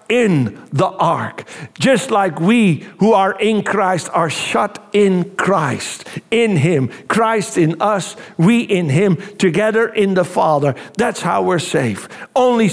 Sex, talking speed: male, 145 wpm